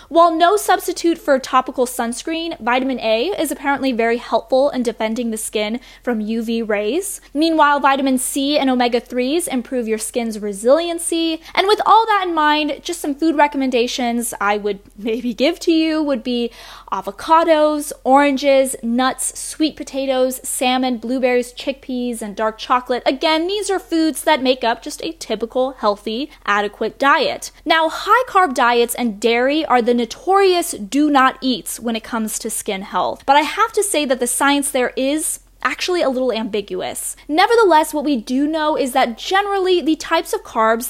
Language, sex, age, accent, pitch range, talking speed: English, female, 10-29, American, 230-300 Hz, 165 wpm